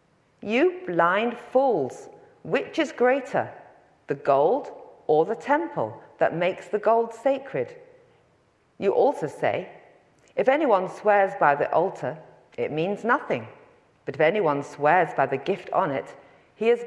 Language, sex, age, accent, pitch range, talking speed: English, female, 40-59, British, 155-240 Hz, 140 wpm